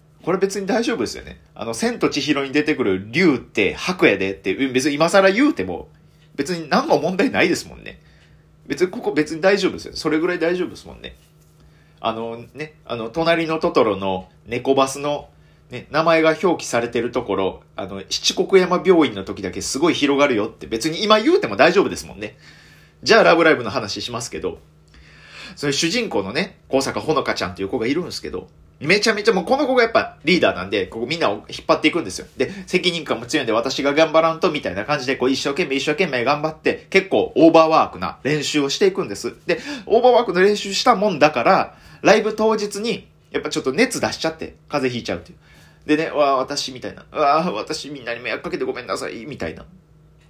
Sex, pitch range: male, 130-185 Hz